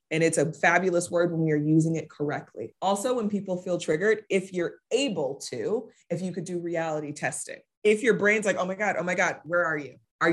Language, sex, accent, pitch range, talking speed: English, female, American, 160-205 Hz, 230 wpm